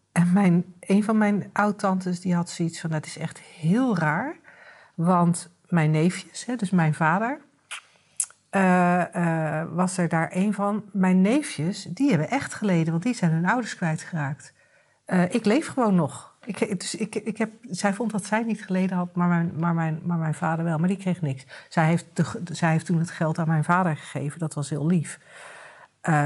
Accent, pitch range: Dutch, 160-195 Hz